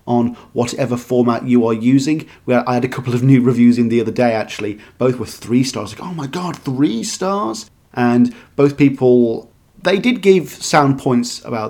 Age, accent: 30-49, British